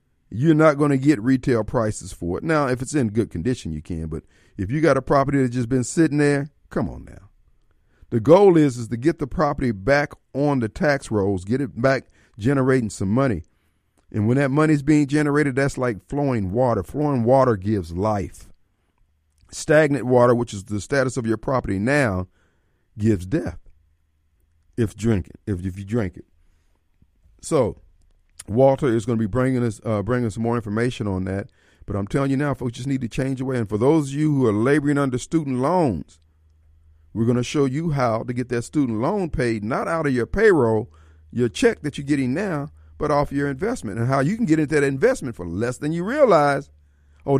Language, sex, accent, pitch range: Japanese, male, American, 95-140 Hz